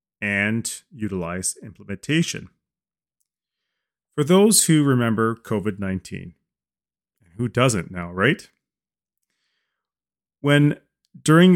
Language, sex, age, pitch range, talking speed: English, male, 30-49, 100-140 Hz, 75 wpm